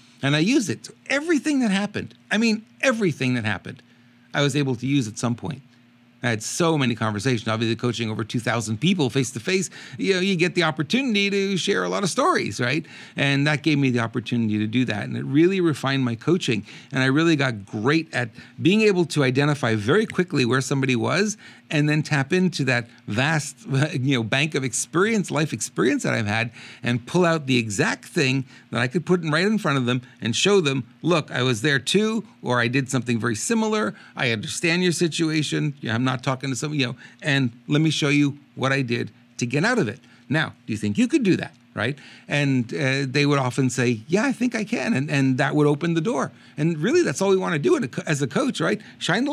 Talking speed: 225 wpm